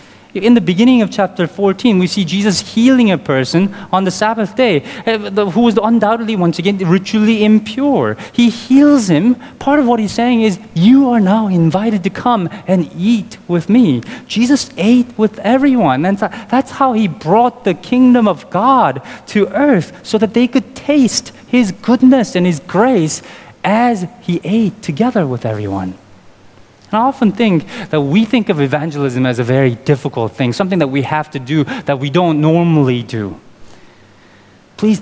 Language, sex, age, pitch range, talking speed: English, male, 30-49, 160-230 Hz, 170 wpm